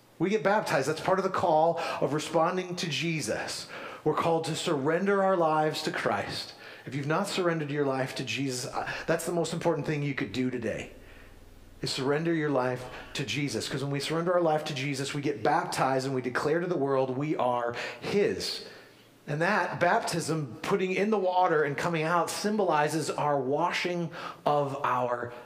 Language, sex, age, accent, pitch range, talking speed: English, male, 40-59, American, 135-185 Hz, 185 wpm